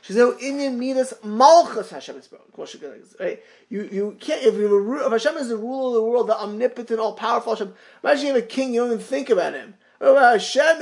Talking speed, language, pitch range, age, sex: 200 wpm, English, 215-270 Hz, 30-49, male